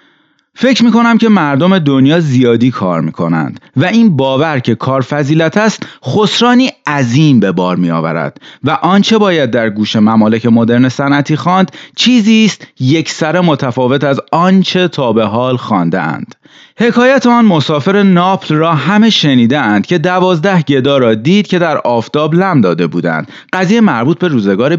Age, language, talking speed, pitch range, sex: 30-49, Persian, 155 wpm, 130-205 Hz, male